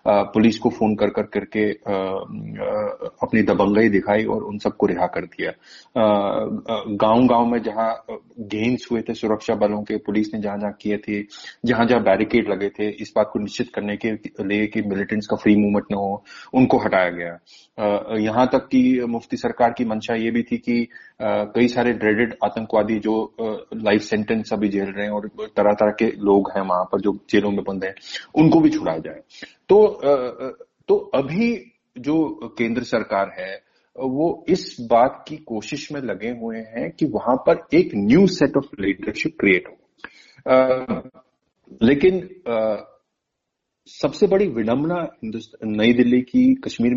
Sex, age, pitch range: male, 30-49, 105-150 Hz